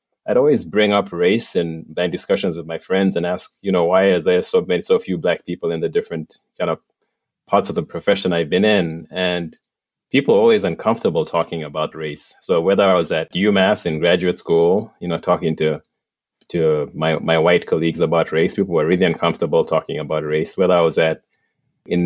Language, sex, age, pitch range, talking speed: English, male, 20-39, 80-95 Hz, 205 wpm